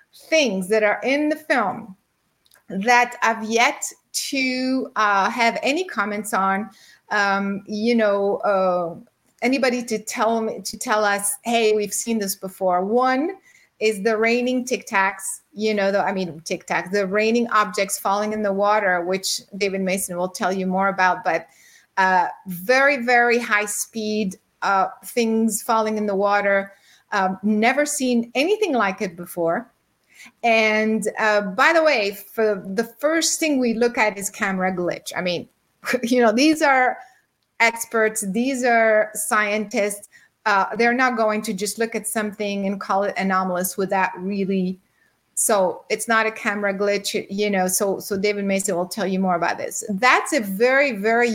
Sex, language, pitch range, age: female, English, 195-240 Hz, 30-49